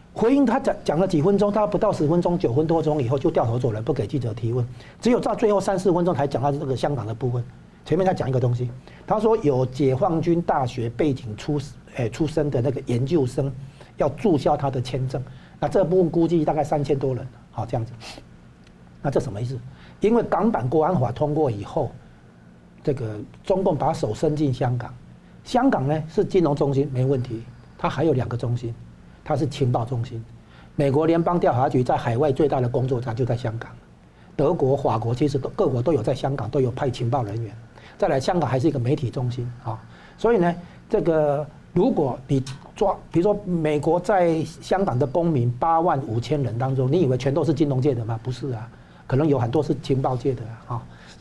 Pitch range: 120-160 Hz